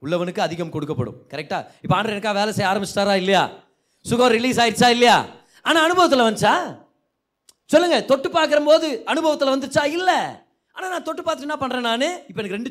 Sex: male